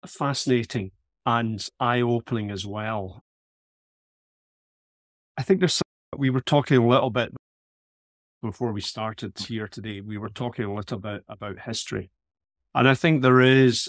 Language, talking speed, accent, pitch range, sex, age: English, 145 wpm, British, 100-120 Hz, male, 30-49